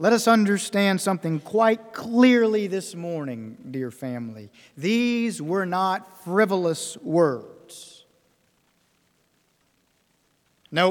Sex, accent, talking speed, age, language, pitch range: male, American, 90 wpm, 50-69, English, 160-235 Hz